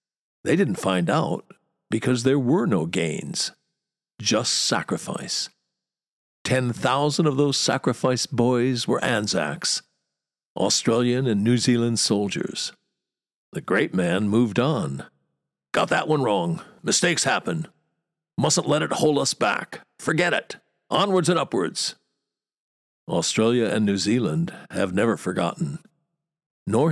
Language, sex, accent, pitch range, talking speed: English, male, American, 105-145 Hz, 120 wpm